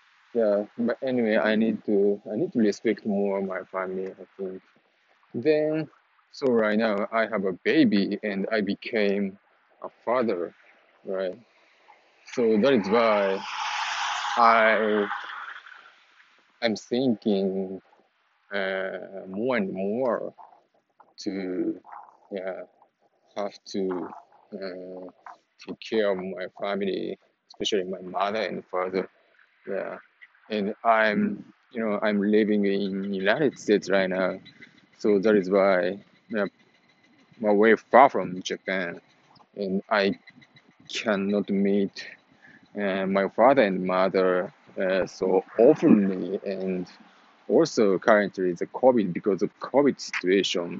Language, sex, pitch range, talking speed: English, male, 95-110 Hz, 115 wpm